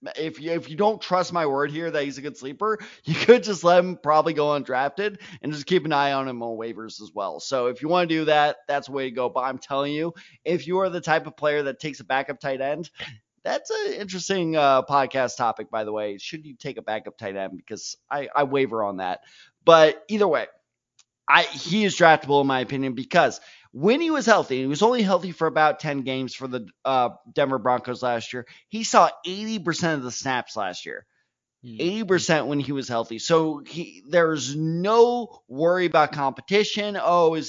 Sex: male